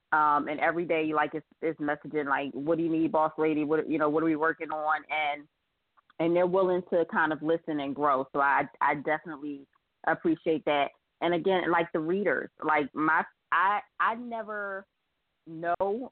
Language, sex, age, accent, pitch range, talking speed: English, female, 20-39, American, 150-170 Hz, 185 wpm